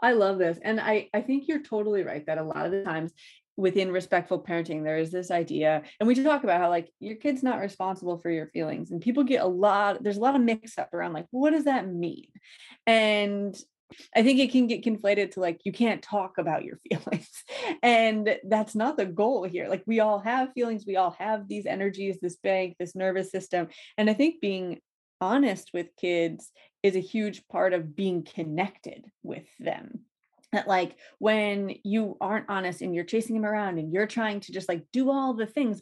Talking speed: 215 wpm